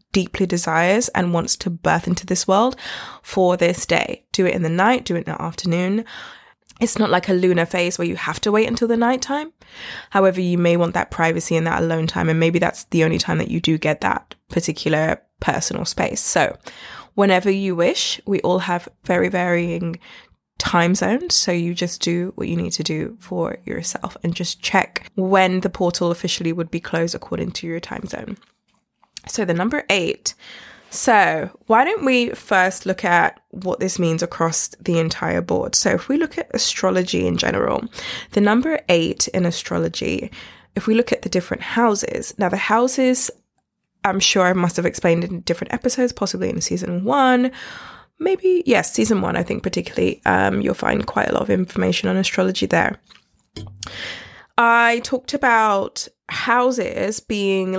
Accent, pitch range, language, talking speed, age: British, 170-220 Hz, English, 180 wpm, 20-39